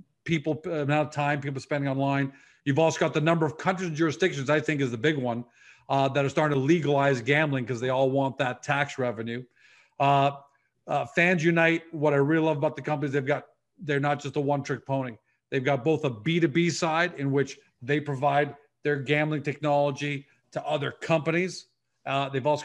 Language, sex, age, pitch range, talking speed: English, male, 40-59, 140-155 Hz, 205 wpm